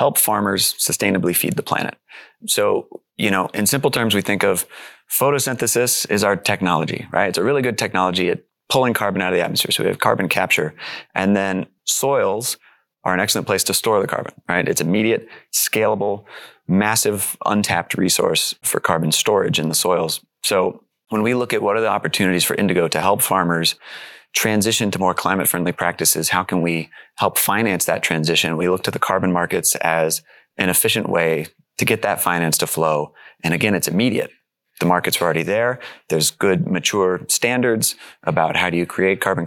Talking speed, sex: 185 wpm, male